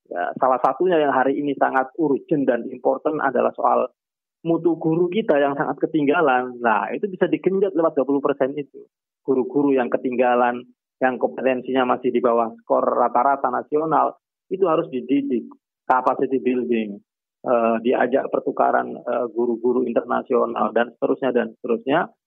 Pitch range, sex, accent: 125-165 Hz, male, native